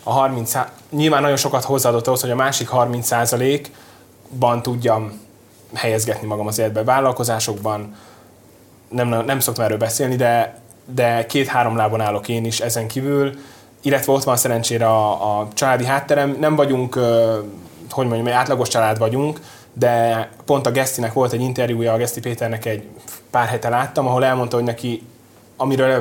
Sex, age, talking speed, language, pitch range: male, 20-39, 150 wpm, Hungarian, 115-140 Hz